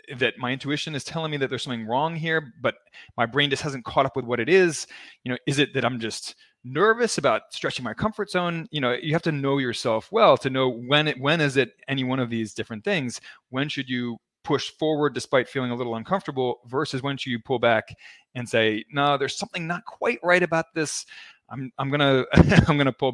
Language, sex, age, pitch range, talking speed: English, male, 20-39, 125-155 Hz, 225 wpm